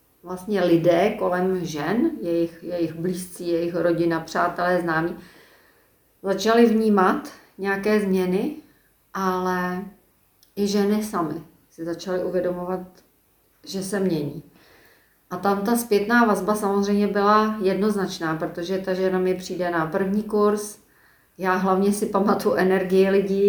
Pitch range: 175-205 Hz